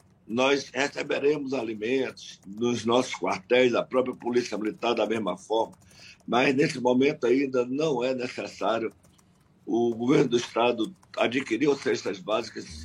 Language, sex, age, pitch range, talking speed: Portuguese, male, 60-79, 110-135 Hz, 125 wpm